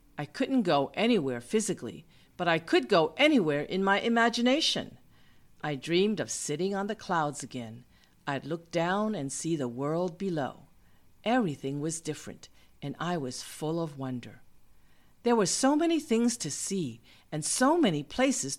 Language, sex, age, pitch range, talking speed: English, female, 50-69, 140-210 Hz, 160 wpm